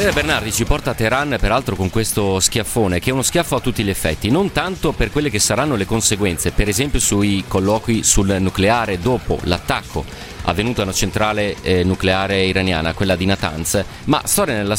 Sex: male